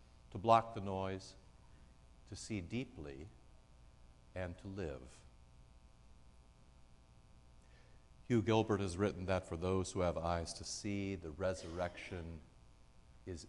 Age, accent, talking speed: 60-79, American, 110 wpm